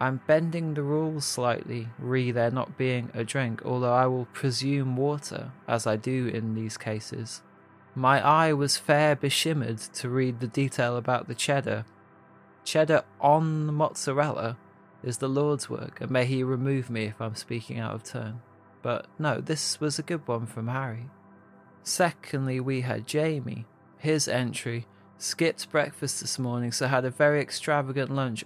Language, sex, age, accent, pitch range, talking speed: English, male, 20-39, British, 115-140 Hz, 165 wpm